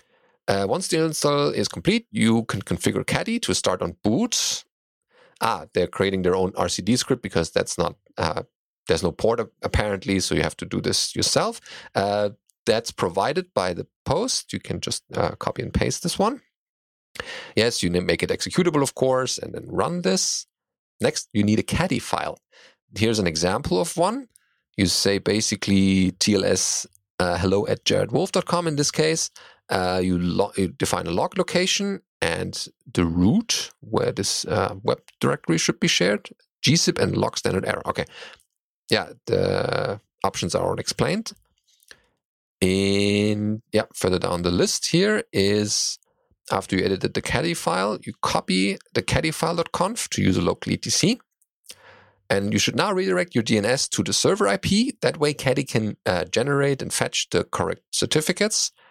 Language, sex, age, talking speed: English, male, 30-49, 165 wpm